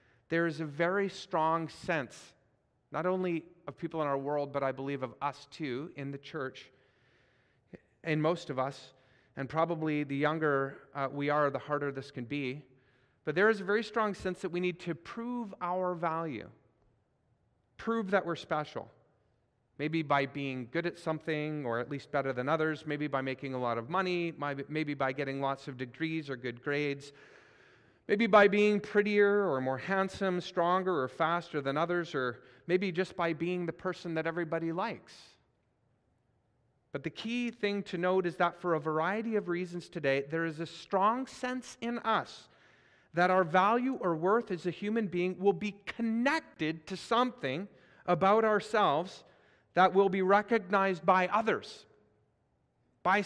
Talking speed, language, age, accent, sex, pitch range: 170 wpm, English, 40-59, American, male, 140-190 Hz